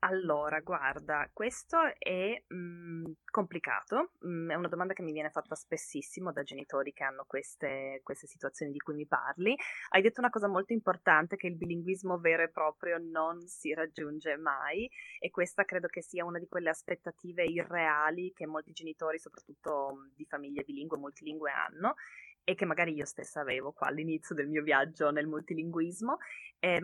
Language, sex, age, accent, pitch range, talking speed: Italian, female, 20-39, native, 155-205 Hz, 170 wpm